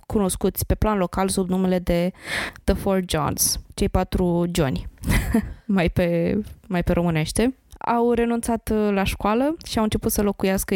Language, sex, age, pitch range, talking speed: Romanian, female, 20-39, 180-220 Hz, 150 wpm